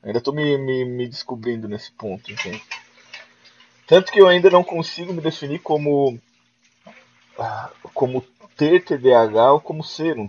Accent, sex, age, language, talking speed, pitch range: Brazilian, male, 20-39, Portuguese, 145 wpm, 115-150 Hz